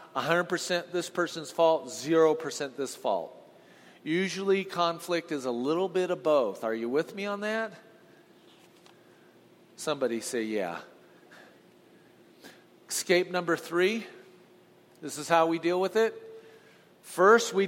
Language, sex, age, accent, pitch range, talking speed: English, male, 40-59, American, 155-220 Hz, 120 wpm